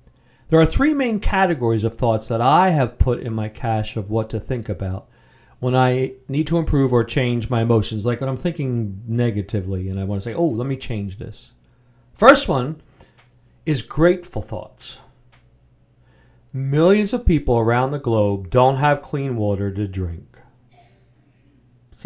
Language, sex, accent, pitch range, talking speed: English, male, American, 110-140 Hz, 165 wpm